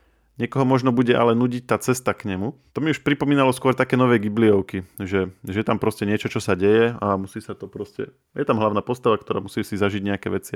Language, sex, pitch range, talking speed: Slovak, male, 100-115 Hz, 225 wpm